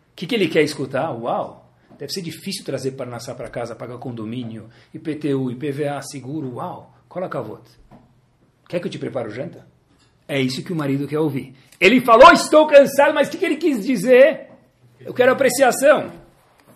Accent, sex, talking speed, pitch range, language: Brazilian, male, 185 wpm, 135-205 Hz, Portuguese